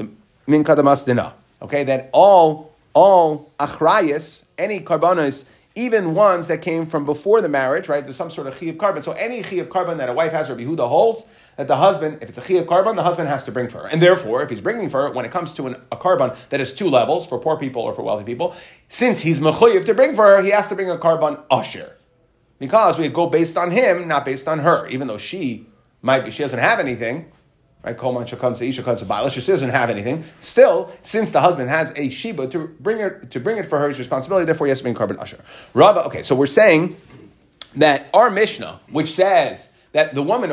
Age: 30-49